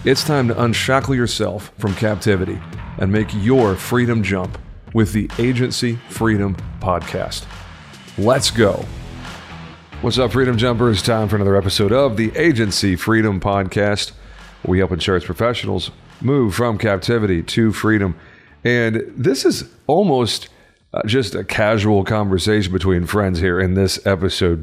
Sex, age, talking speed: male, 40-59, 135 wpm